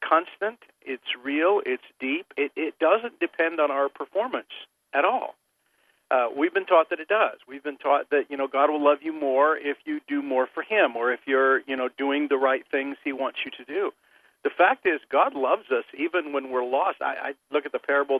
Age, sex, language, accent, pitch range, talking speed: 50-69, male, English, American, 135-190 Hz, 225 wpm